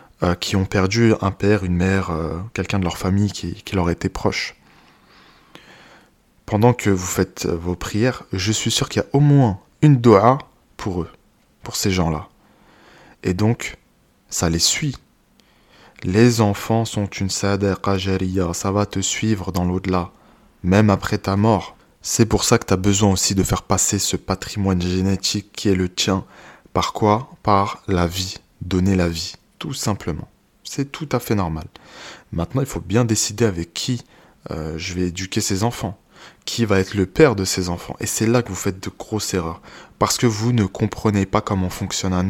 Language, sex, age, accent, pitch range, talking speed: French, male, 20-39, French, 95-110 Hz, 185 wpm